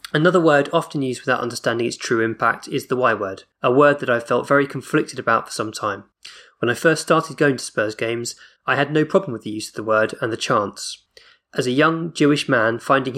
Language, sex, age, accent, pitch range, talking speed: English, male, 20-39, British, 120-145 Hz, 230 wpm